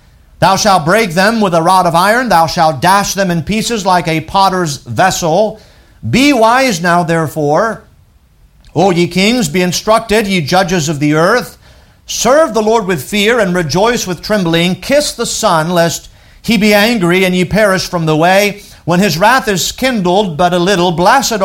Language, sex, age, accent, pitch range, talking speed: English, male, 50-69, American, 155-200 Hz, 180 wpm